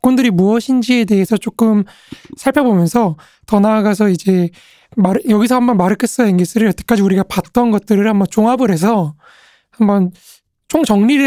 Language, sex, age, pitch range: Korean, male, 20-39, 185-235 Hz